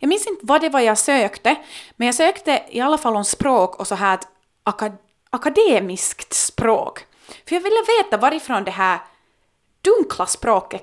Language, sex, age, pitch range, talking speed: Finnish, female, 30-49, 195-300 Hz, 175 wpm